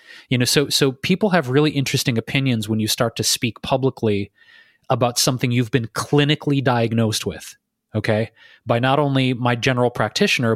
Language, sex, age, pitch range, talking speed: English, male, 30-49, 115-150 Hz, 165 wpm